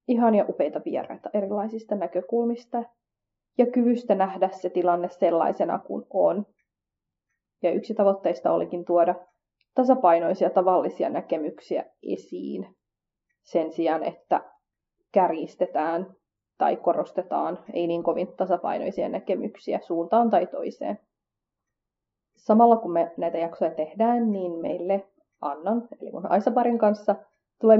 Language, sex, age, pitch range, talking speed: Finnish, female, 30-49, 175-220 Hz, 110 wpm